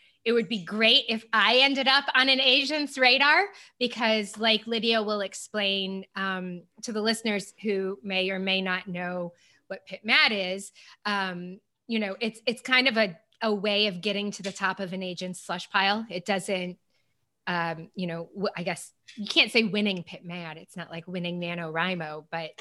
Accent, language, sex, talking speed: American, English, female, 185 wpm